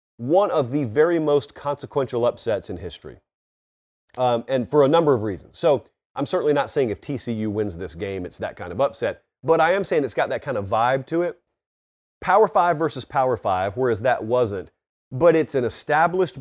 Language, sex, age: English, male, 30-49